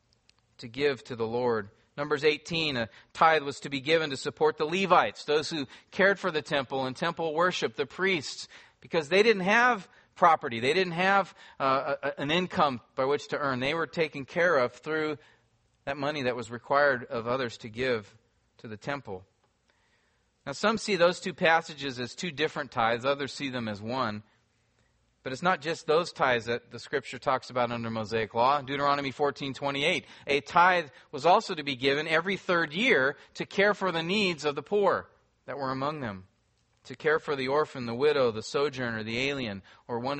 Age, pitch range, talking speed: 40-59, 125-165 Hz, 195 wpm